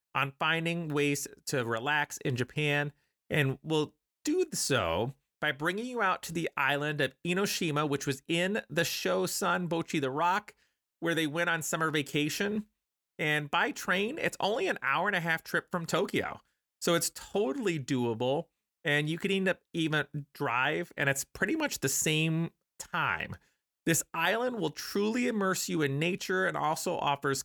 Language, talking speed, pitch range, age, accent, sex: English, 160 wpm, 145-180 Hz, 30-49, American, male